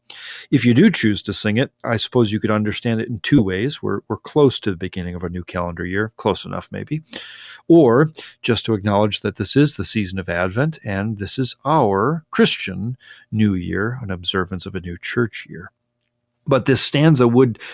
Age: 40-59